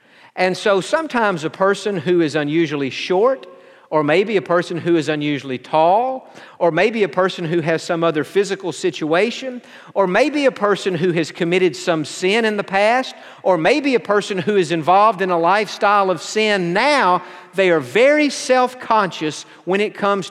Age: 50-69